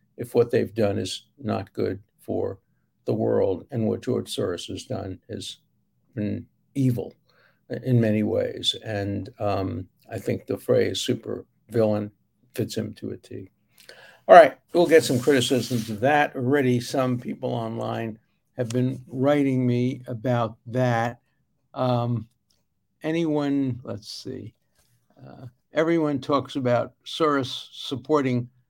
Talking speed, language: 130 wpm, English